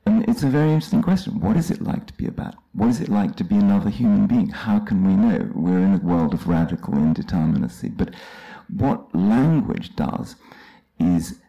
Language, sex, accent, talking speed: English, male, British, 205 wpm